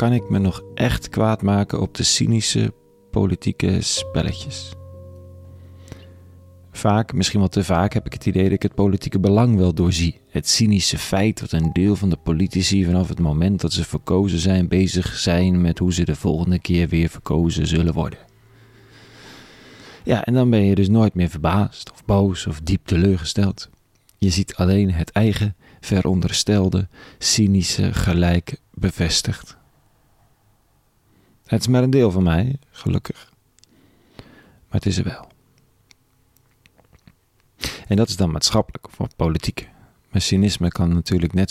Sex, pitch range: male, 90-110 Hz